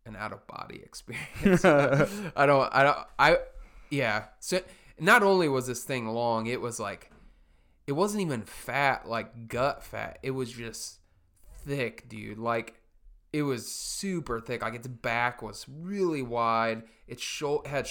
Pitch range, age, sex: 115-145 Hz, 20-39, male